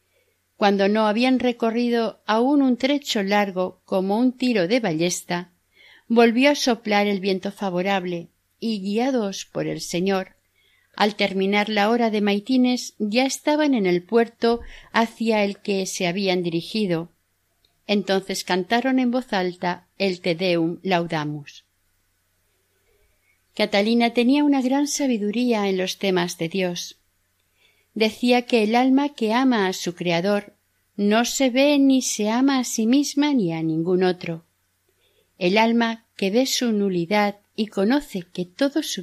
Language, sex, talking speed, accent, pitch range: Spanish, female, 145 wpm, Spanish, 180-235 Hz